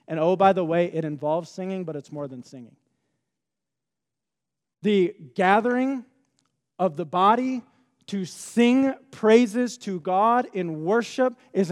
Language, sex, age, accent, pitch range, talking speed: English, male, 40-59, American, 170-235 Hz, 135 wpm